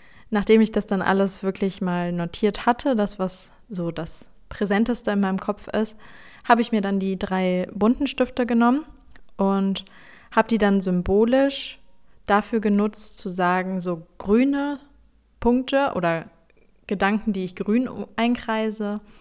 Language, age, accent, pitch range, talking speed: German, 20-39, German, 185-215 Hz, 140 wpm